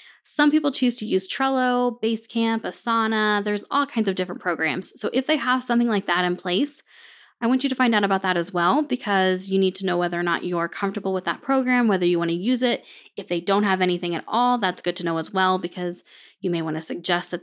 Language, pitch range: English, 185-235 Hz